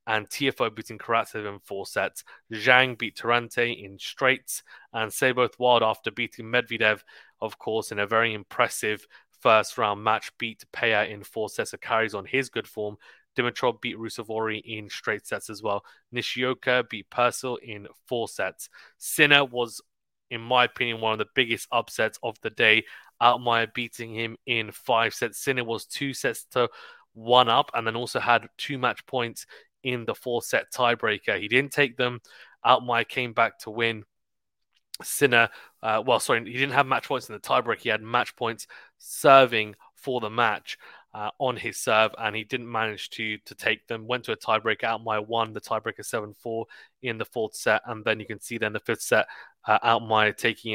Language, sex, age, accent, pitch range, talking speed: English, male, 20-39, British, 110-125 Hz, 190 wpm